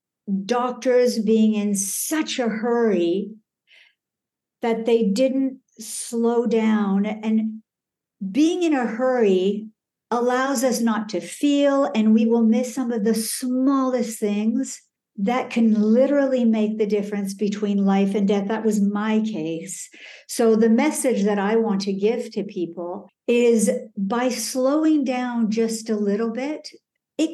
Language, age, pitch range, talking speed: English, 60-79, 210-245 Hz, 140 wpm